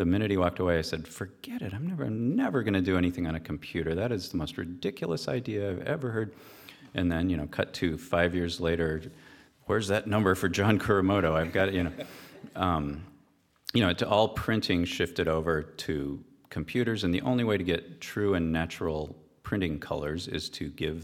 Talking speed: 205 wpm